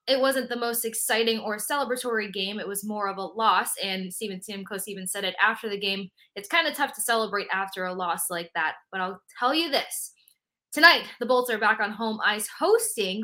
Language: English